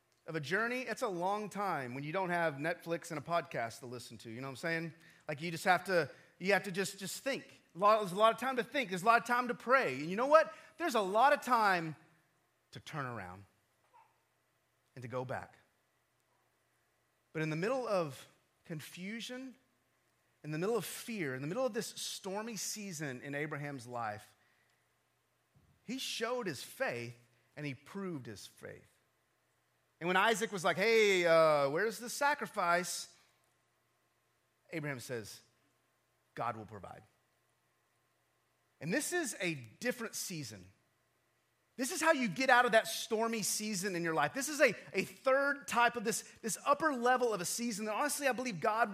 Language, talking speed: English, 180 wpm